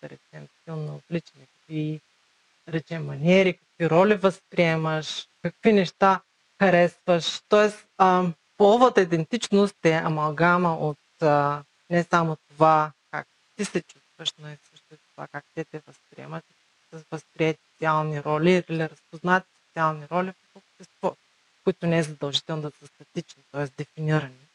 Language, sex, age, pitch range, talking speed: Bulgarian, female, 30-49, 150-180 Hz, 125 wpm